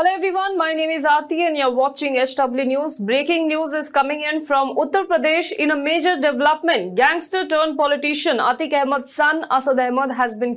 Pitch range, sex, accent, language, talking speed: 255-310 Hz, female, Indian, English, 185 wpm